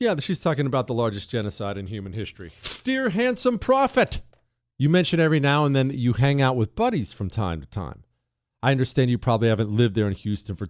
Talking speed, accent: 220 wpm, American